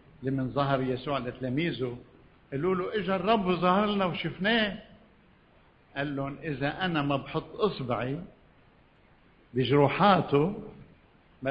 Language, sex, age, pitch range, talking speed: Arabic, male, 60-79, 130-175 Hz, 105 wpm